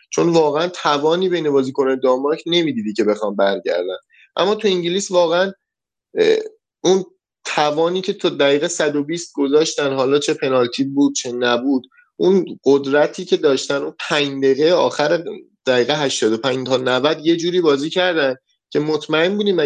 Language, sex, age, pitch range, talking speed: Persian, male, 30-49, 135-175 Hz, 145 wpm